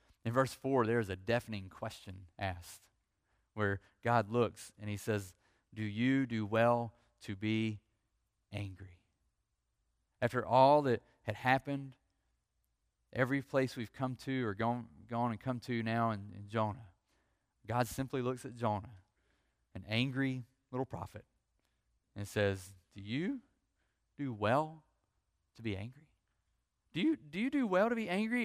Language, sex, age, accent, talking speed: English, male, 30-49, American, 145 wpm